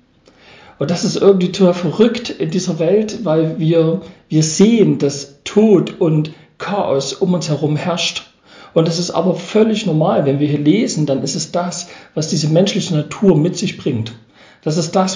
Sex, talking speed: male, 180 wpm